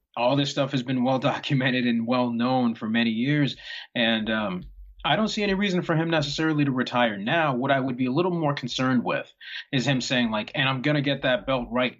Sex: male